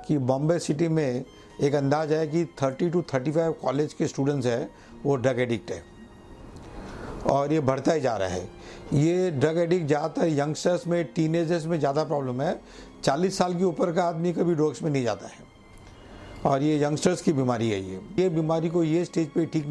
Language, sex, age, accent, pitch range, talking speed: English, male, 60-79, Indian, 135-165 Hz, 180 wpm